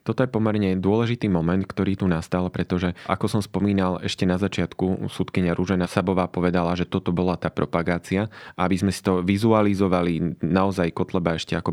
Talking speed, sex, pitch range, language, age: 170 wpm, male, 85-95 Hz, Slovak, 20-39